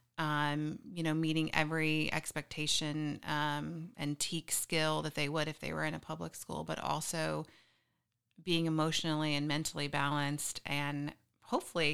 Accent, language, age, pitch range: American, English, 30-49, 150-180 Hz